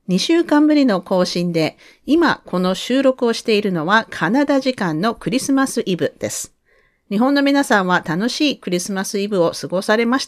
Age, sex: 40-59, female